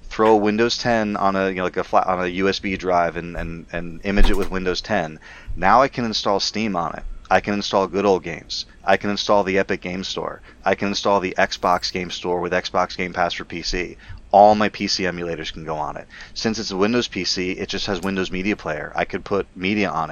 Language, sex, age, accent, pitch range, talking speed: English, male, 30-49, American, 90-105 Hz, 235 wpm